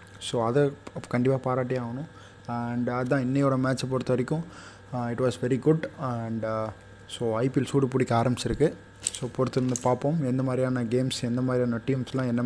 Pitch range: 115-130 Hz